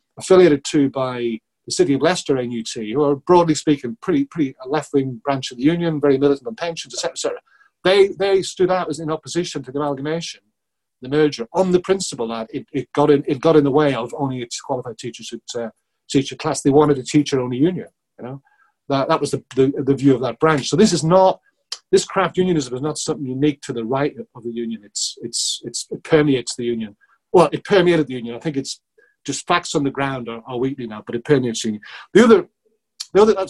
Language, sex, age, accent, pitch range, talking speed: English, male, 40-59, British, 125-165 Hz, 230 wpm